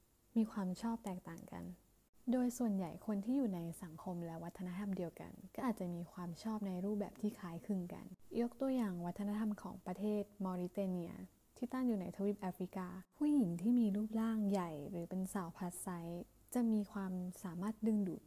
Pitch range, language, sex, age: 175-215 Hz, Thai, female, 20-39